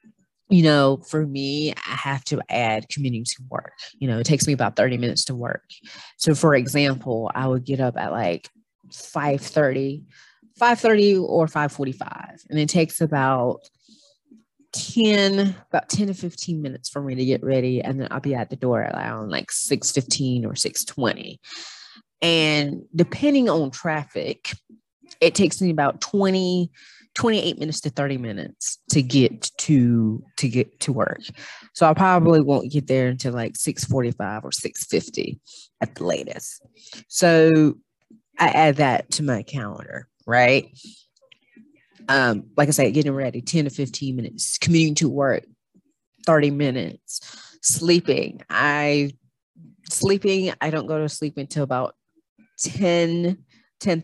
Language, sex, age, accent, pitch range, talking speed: English, female, 30-49, American, 130-180 Hz, 145 wpm